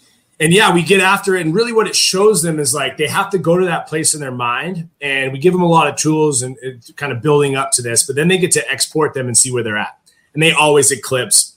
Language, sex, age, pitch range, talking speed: English, male, 30-49, 130-175 Hz, 290 wpm